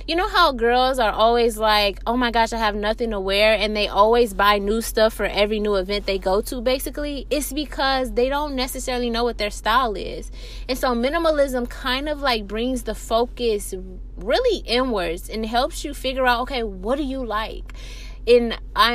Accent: American